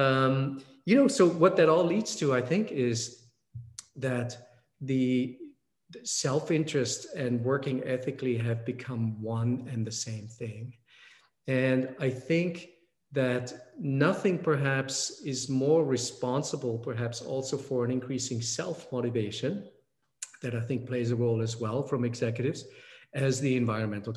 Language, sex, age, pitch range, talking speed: English, male, 40-59, 120-135 Hz, 130 wpm